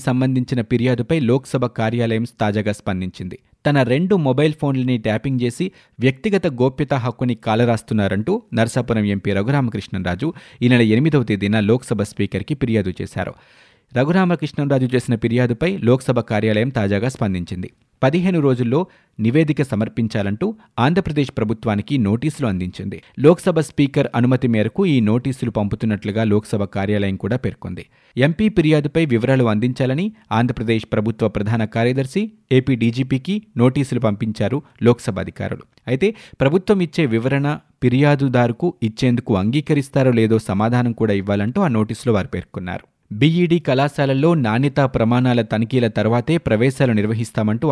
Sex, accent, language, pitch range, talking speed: male, native, Telugu, 110-140 Hz, 110 wpm